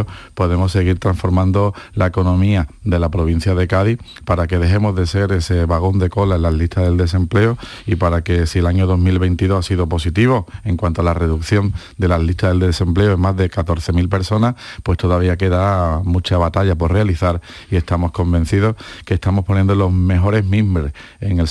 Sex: male